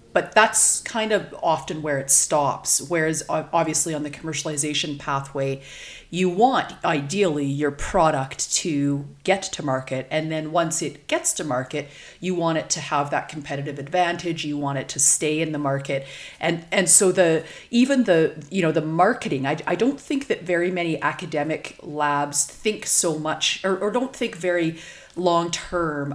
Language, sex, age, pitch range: English, female, 40-59, 145-185 Hz